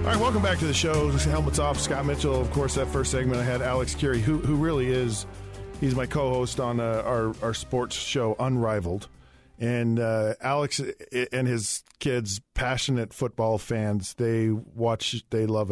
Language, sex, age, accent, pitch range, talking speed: English, male, 40-59, American, 110-135 Hz, 180 wpm